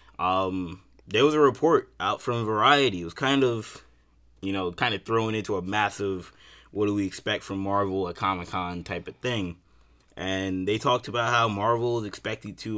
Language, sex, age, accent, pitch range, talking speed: English, male, 20-39, American, 90-110 Hz, 155 wpm